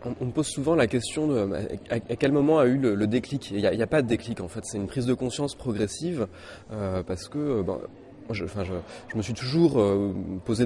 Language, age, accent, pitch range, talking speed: French, 20-39, French, 100-135 Hz, 230 wpm